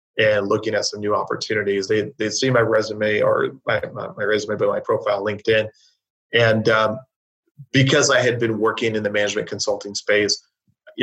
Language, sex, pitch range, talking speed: English, male, 105-125 Hz, 180 wpm